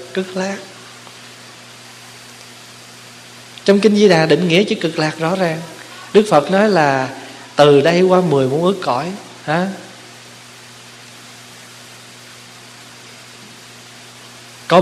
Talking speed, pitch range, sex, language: 105 wpm, 125-170 Hz, male, Vietnamese